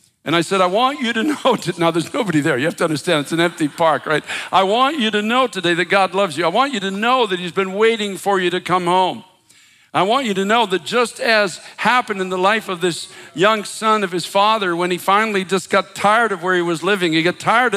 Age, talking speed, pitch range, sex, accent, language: 60-79, 265 wpm, 185-225 Hz, male, American, English